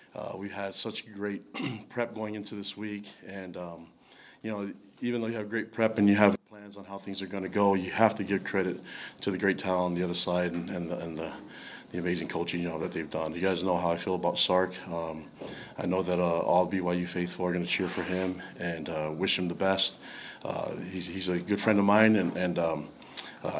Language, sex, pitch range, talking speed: English, male, 90-100 Hz, 245 wpm